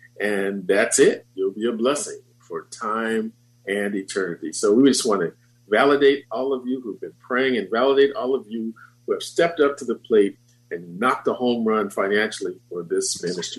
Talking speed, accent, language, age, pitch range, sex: 195 wpm, American, English, 50-69, 120-140 Hz, male